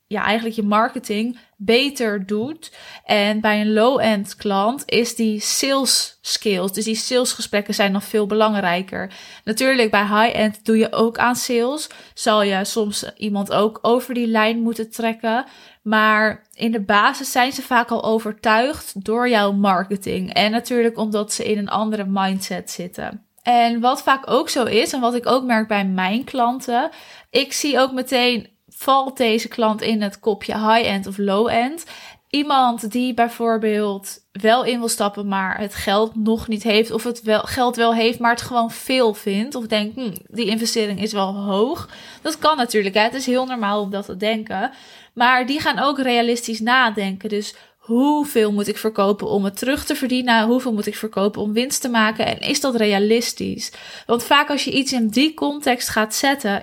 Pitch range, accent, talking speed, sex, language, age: 215-245 Hz, Dutch, 180 wpm, female, Dutch, 20-39